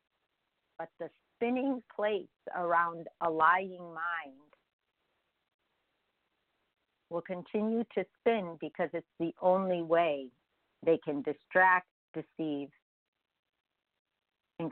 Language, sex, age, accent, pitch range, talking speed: English, female, 50-69, American, 150-190 Hz, 90 wpm